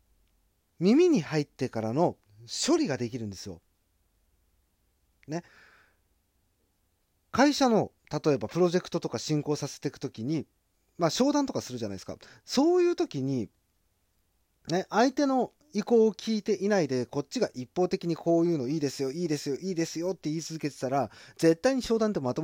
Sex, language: male, Japanese